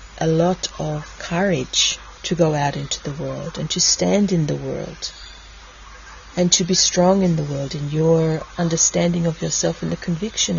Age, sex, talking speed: 40-59, female, 175 wpm